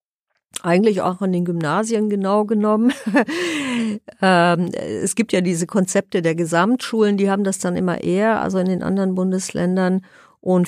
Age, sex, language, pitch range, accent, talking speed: 50-69, female, German, 170-195 Hz, German, 145 wpm